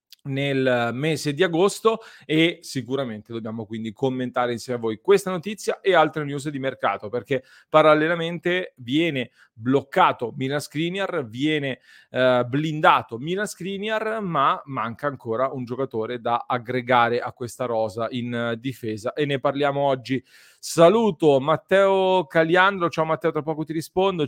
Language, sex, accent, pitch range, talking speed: Italian, male, native, 130-170 Hz, 135 wpm